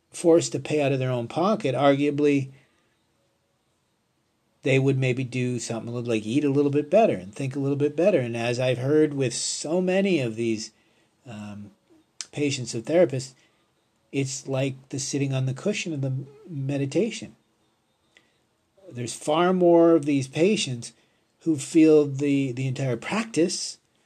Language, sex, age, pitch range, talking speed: English, male, 40-59, 120-150 Hz, 150 wpm